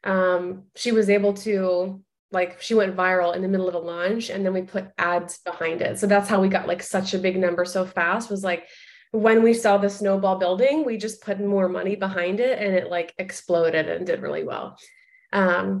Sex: female